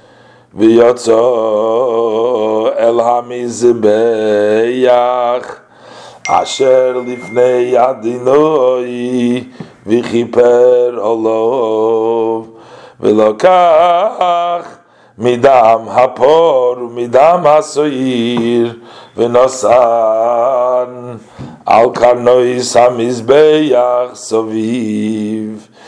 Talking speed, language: 40 wpm, English